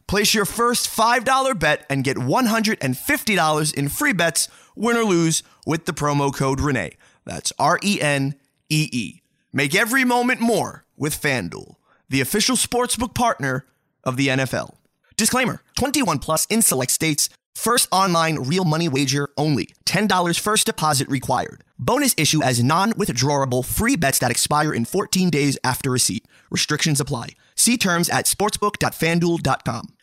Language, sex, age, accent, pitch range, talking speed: English, male, 30-49, American, 135-185 Hz, 140 wpm